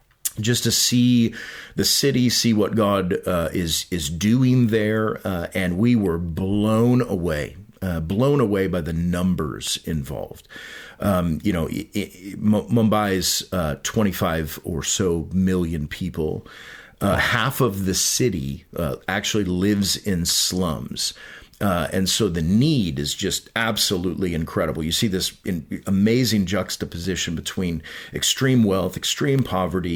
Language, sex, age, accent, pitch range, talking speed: English, male, 40-59, American, 85-110 Hz, 130 wpm